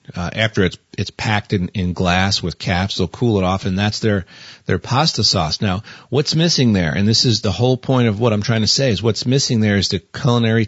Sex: male